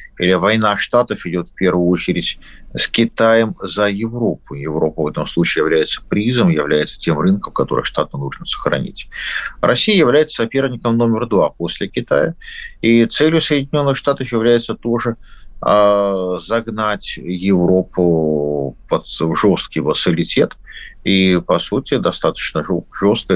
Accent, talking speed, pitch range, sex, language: native, 120 wpm, 90-130 Hz, male, Russian